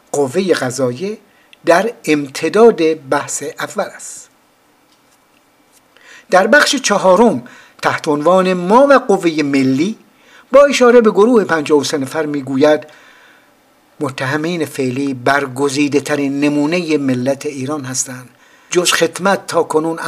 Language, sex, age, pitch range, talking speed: Persian, male, 60-79, 135-185 Hz, 100 wpm